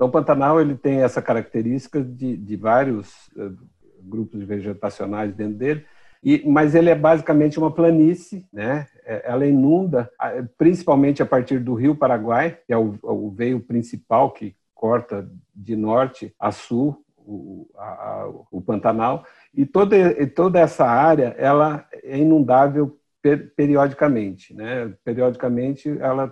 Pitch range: 120-150 Hz